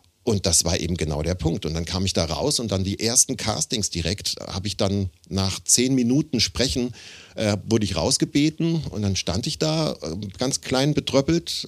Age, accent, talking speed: 50-69, German, 195 wpm